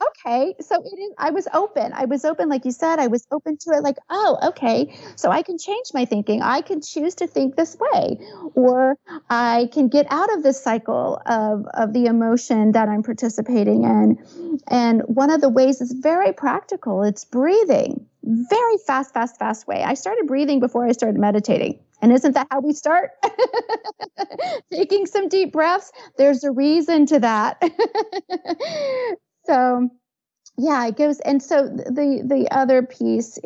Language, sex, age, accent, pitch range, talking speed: English, female, 40-59, American, 220-305 Hz, 170 wpm